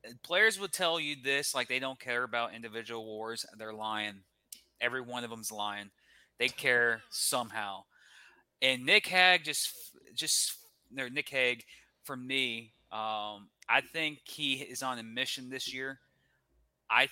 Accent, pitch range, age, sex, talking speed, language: American, 115-135 Hz, 30-49, male, 145 wpm, English